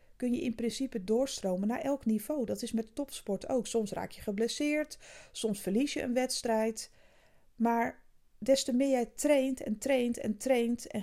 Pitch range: 200-250 Hz